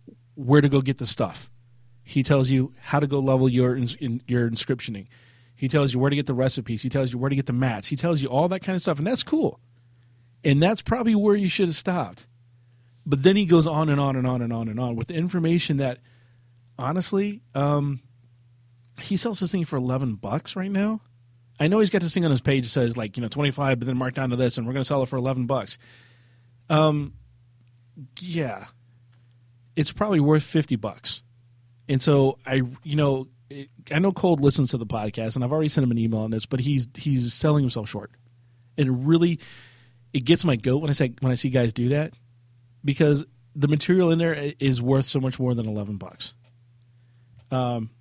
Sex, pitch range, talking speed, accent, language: male, 120-145 Hz, 215 wpm, American, English